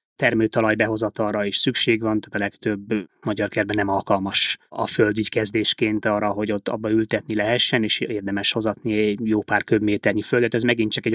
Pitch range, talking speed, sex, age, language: 105-115 Hz, 170 wpm, male, 20-39, Hungarian